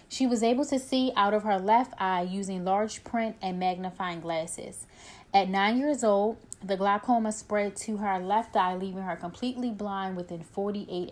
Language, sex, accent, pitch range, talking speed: English, female, American, 185-225 Hz, 180 wpm